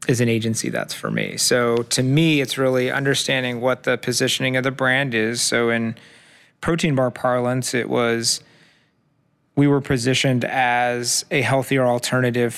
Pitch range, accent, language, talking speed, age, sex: 120-140 Hz, American, English, 155 wpm, 30-49, male